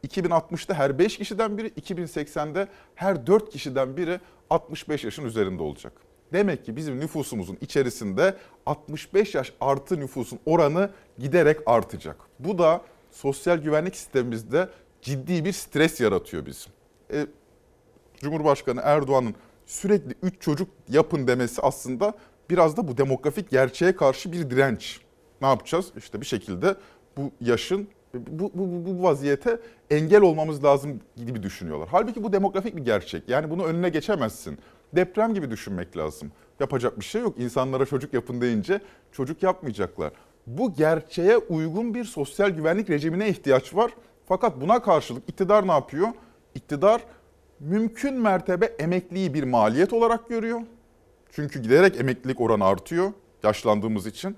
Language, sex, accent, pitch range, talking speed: Turkish, male, native, 135-195 Hz, 135 wpm